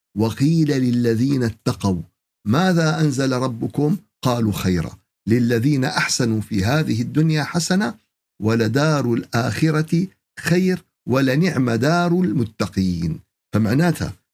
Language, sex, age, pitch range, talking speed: Arabic, male, 50-69, 110-160 Hz, 90 wpm